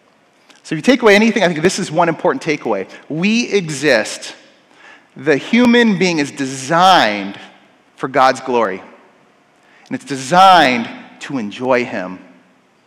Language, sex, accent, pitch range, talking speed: English, male, American, 155-235 Hz, 135 wpm